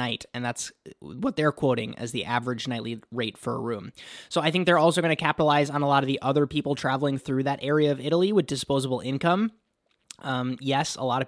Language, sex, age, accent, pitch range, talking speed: English, male, 20-39, American, 130-155 Hz, 230 wpm